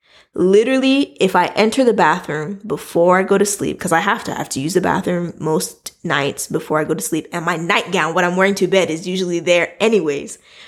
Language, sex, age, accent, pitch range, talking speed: English, female, 20-39, American, 175-220 Hz, 225 wpm